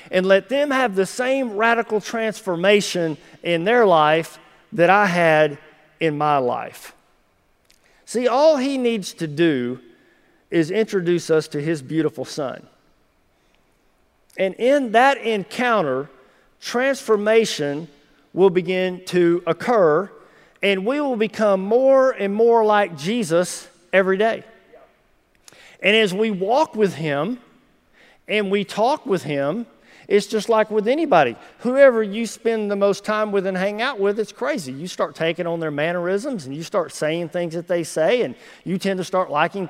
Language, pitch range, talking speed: English, 170-230 Hz, 150 wpm